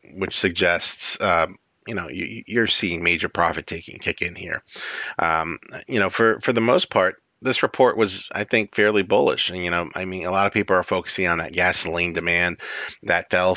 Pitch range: 90-105 Hz